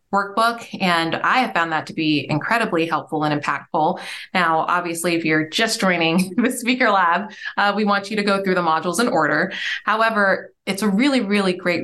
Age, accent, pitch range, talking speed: 20-39, American, 155-195 Hz, 195 wpm